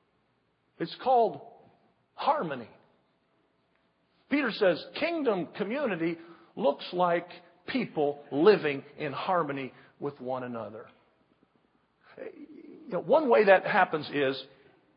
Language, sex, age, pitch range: English, male, 50-69, 155-220 Hz